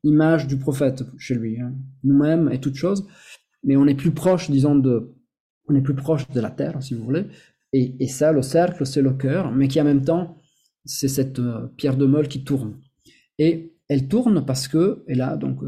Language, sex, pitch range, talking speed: French, male, 130-160 Hz, 210 wpm